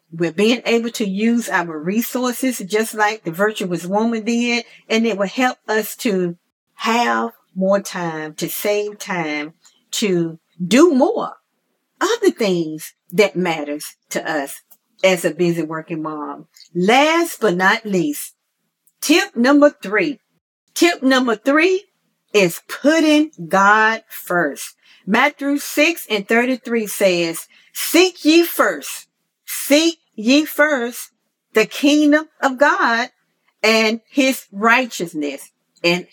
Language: English